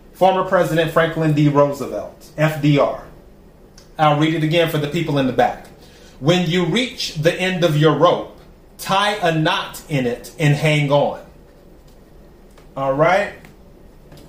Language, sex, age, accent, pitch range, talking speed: English, male, 30-49, American, 150-180 Hz, 145 wpm